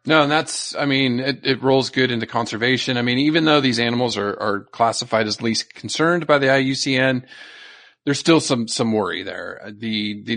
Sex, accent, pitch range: male, American, 105-130 Hz